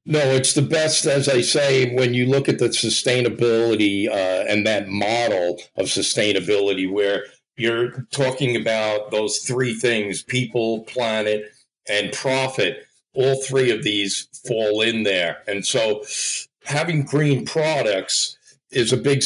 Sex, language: male, English